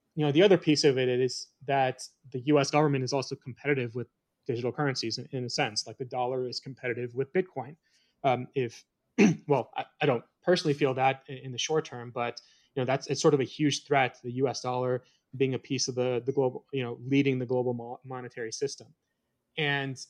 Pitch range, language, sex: 125-145 Hz, English, male